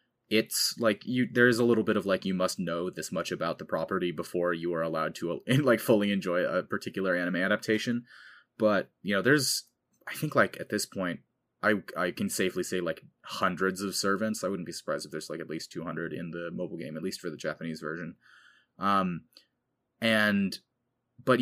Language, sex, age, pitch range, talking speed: English, male, 20-39, 90-110 Hz, 200 wpm